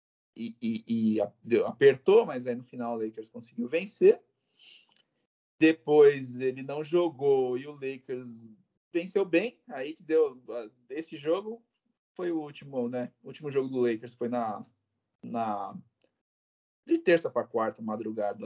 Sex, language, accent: male, Portuguese, Brazilian